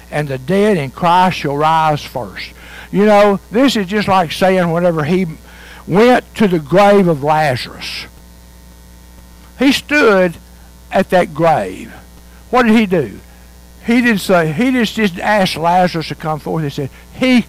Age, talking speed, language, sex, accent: 60-79, 155 wpm, English, male, American